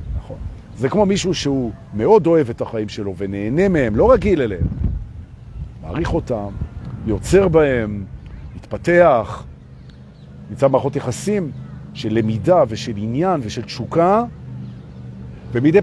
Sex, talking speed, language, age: male, 110 wpm, Hebrew, 50-69